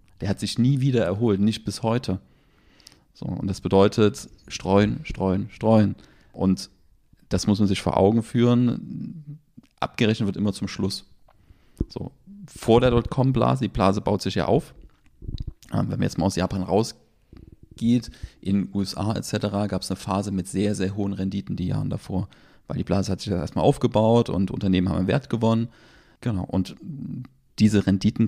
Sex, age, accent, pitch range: male, 30-49, German, 95-110 Hz